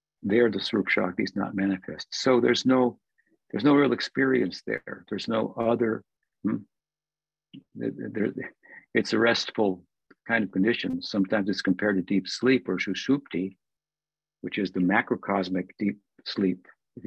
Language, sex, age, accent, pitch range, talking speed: English, male, 50-69, American, 95-115 Hz, 145 wpm